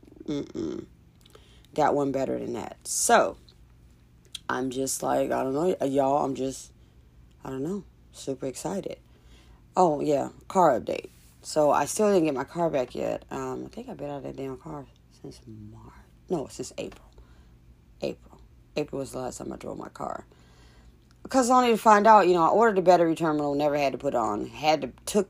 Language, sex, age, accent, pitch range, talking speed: English, female, 40-59, American, 110-170 Hz, 190 wpm